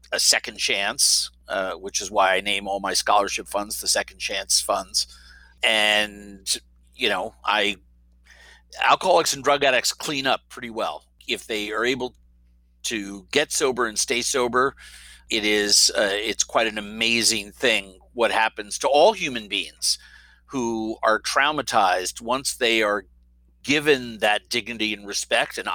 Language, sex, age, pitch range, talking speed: English, male, 50-69, 95-125 Hz, 150 wpm